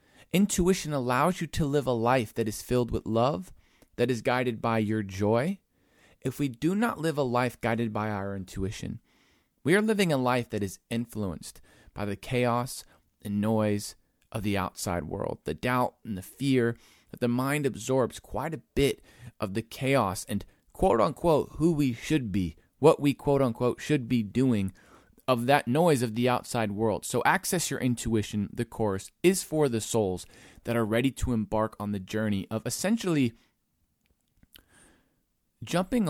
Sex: male